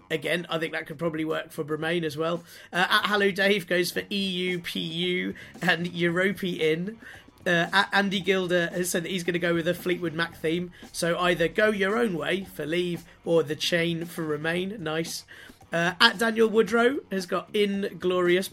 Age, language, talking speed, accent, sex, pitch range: 30-49, English, 190 wpm, British, male, 165-195 Hz